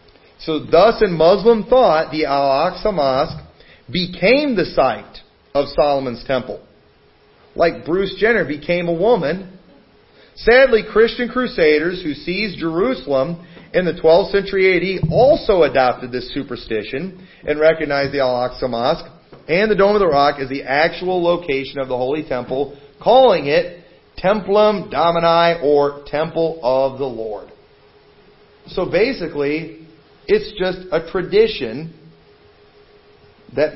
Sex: male